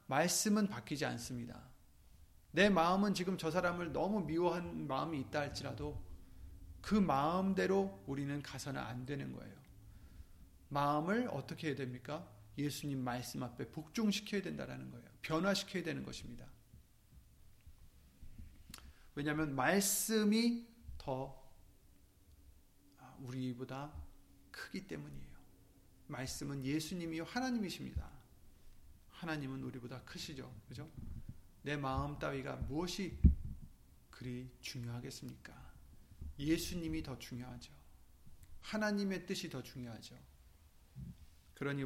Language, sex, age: Korean, male, 40-59